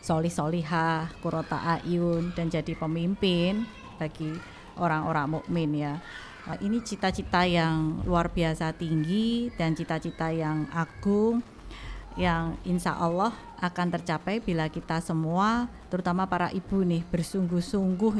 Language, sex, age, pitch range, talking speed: Indonesian, female, 20-39, 165-190 Hz, 110 wpm